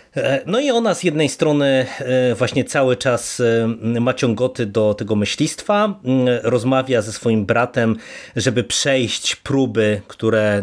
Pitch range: 110-140 Hz